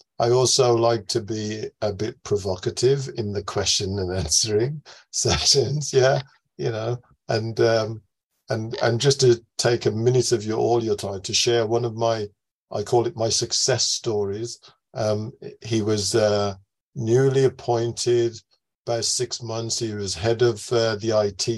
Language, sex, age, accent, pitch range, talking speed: English, male, 50-69, British, 105-120 Hz, 160 wpm